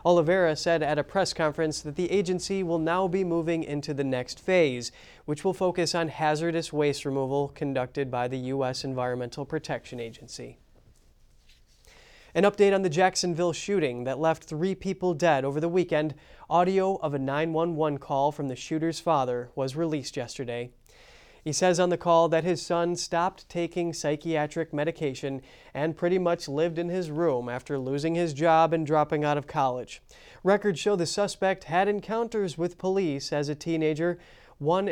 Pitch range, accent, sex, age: 145-180 Hz, American, male, 30-49